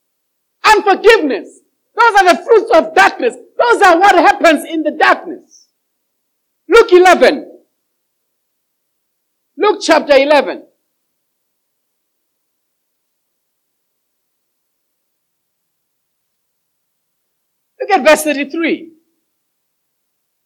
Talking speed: 65 wpm